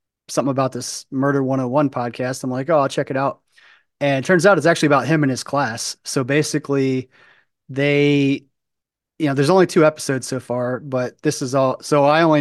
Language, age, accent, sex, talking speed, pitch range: English, 30-49, American, male, 220 wpm, 125-140 Hz